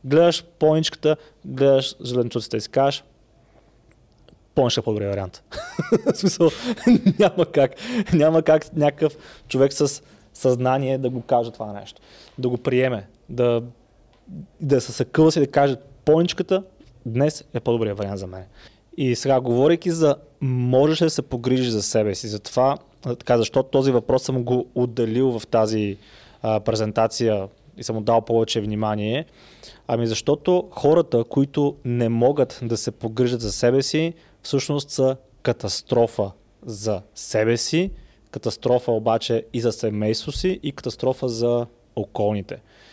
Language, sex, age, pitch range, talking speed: Bulgarian, male, 20-39, 115-145 Hz, 135 wpm